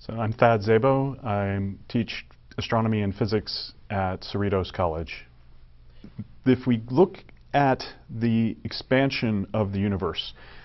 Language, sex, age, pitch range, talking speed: English, male, 40-59, 100-120 Hz, 120 wpm